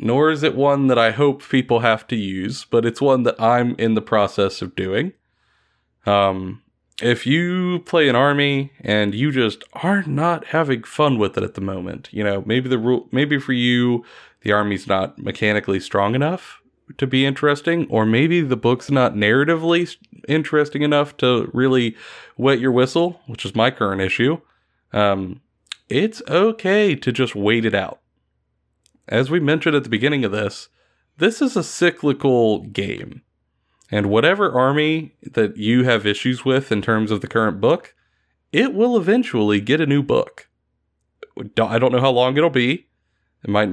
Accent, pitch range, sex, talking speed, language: American, 105-145 Hz, male, 170 wpm, English